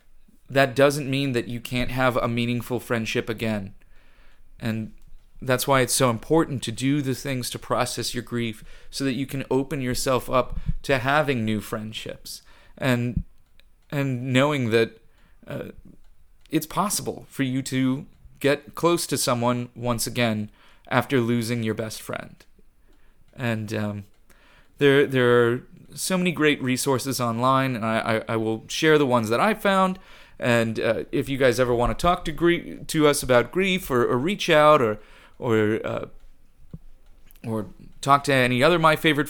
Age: 30-49